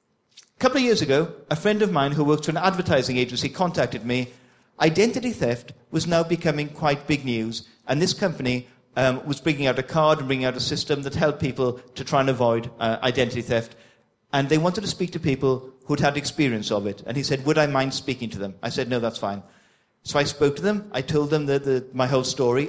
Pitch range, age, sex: 130-165 Hz, 40-59, male